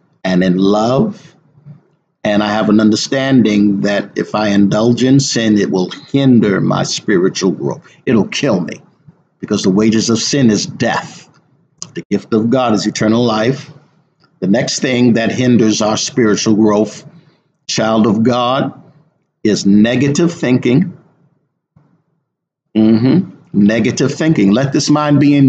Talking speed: 140 wpm